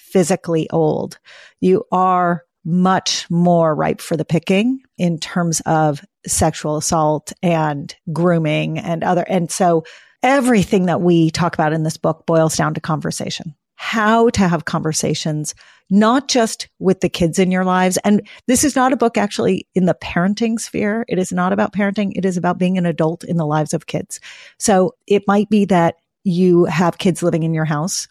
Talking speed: 180 wpm